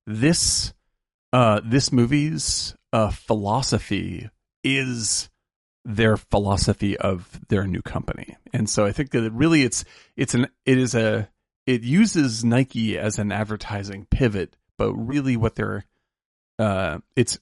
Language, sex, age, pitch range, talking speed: English, male, 40-59, 100-130 Hz, 130 wpm